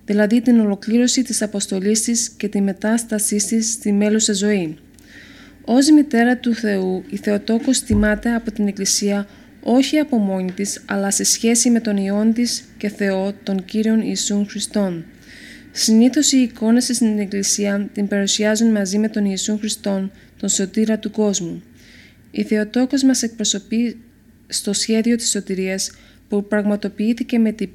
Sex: female